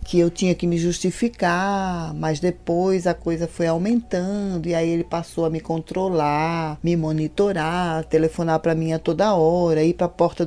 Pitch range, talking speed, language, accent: 170-205 Hz, 180 wpm, English, Brazilian